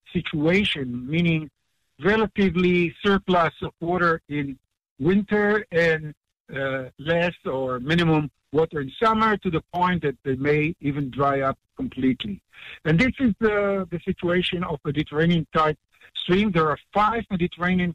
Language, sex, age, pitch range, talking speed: English, male, 60-79, 145-190 Hz, 130 wpm